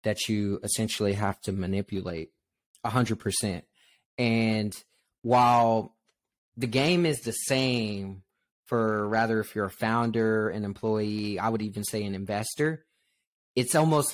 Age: 20-39